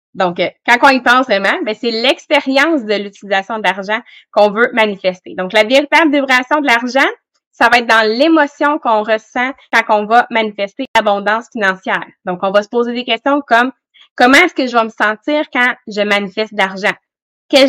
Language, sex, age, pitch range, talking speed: English, female, 20-39, 210-275 Hz, 185 wpm